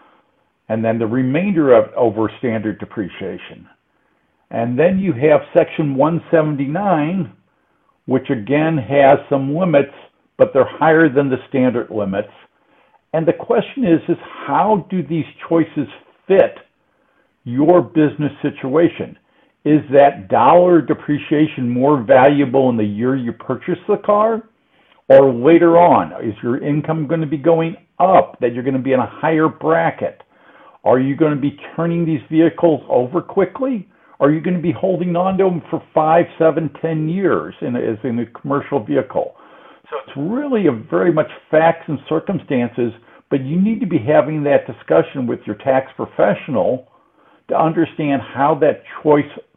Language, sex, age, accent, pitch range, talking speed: English, male, 60-79, American, 130-165 Hz, 155 wpm